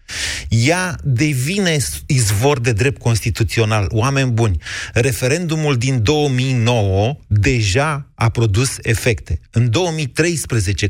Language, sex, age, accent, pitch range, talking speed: Romanian, male, 30-49, native, 115-155 Hz, 95 wpm